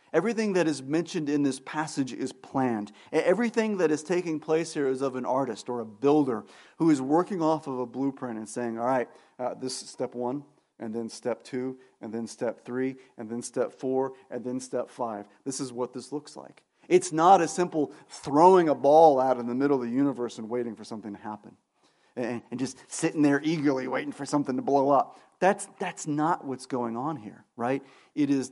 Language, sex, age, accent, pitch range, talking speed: English, male, 40-59, American, 125-160 Hz, 215 wpm